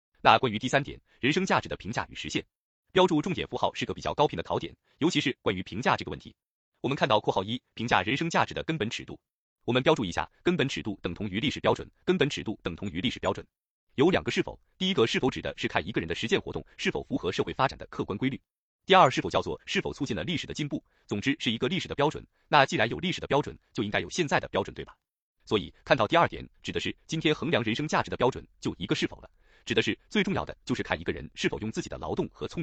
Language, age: Chinese, 30-49